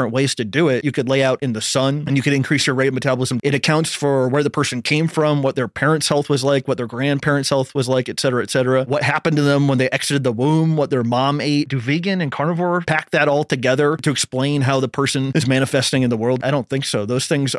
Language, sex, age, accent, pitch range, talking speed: English, male, 30-49, American, 130-155 Hz, 265 wpm